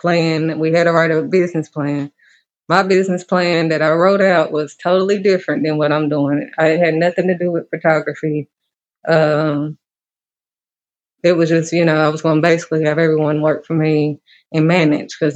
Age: 20-39